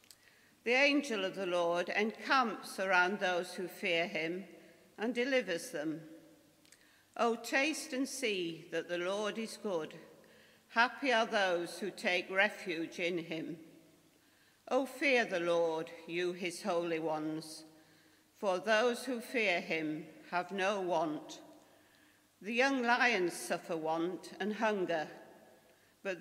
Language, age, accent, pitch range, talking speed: English, 50-69, British, 170-240 Hz, 130 wpm